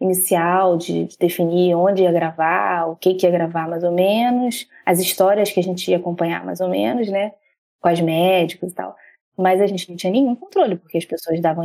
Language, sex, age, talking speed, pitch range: Portuguese, female, 20-39, 210 wpm, 175-210 Hz